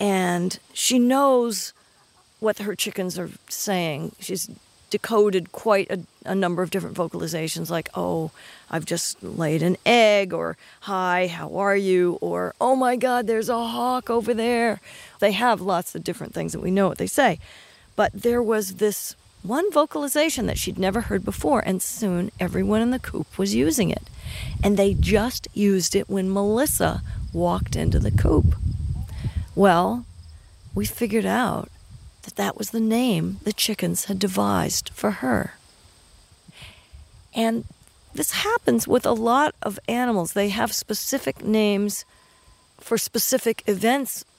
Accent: American